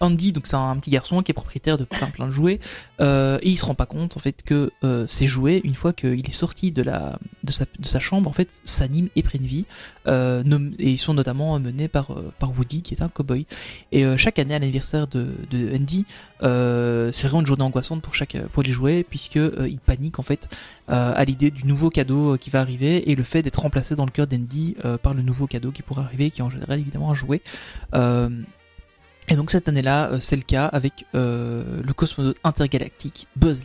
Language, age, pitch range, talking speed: French, 20-39, 130-155 Hz, 235 wpm